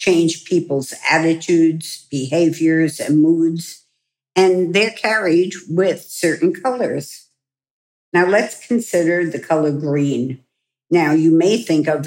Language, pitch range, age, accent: English, 155-180 Hz, 60-79, American